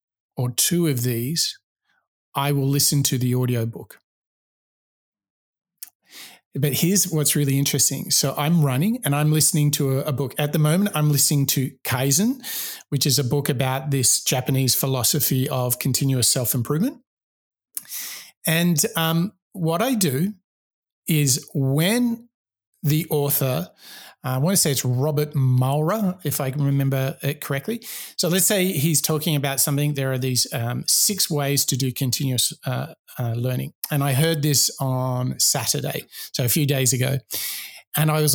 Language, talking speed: English, 155 wpm